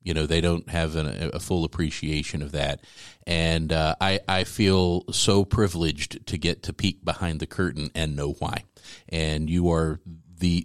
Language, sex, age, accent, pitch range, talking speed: English, male, 50-69, American, 75-90 Hz, 175 wpm